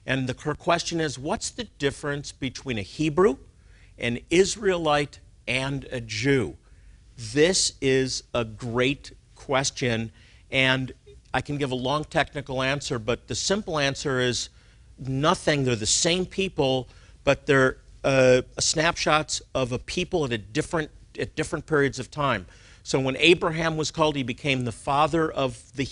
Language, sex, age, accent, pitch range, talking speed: English, male, 50-69, American, 115-145 Hz, 145 wpm